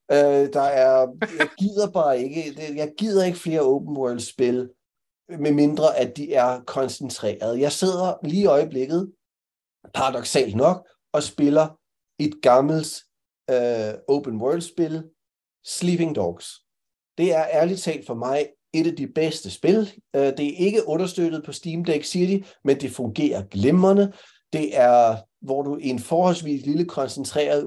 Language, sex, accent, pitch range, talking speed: Danish, male, native, 130-165 Hz, 140 wpm